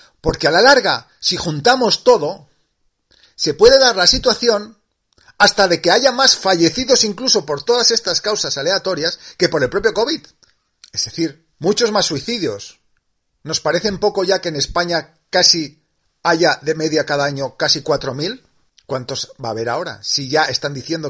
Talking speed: 165 wpm